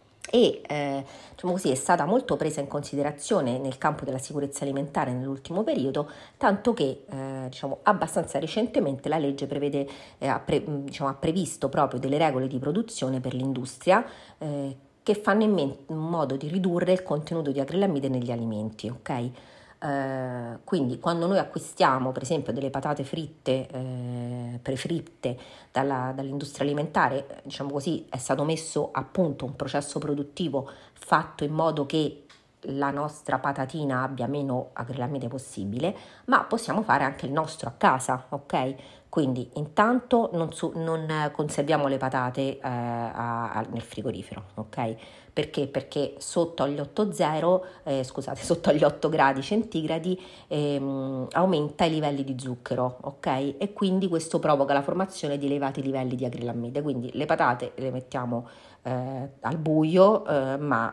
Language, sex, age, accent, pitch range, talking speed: Italian, female, 40-59, native, 130-160 Hz, 150 wpm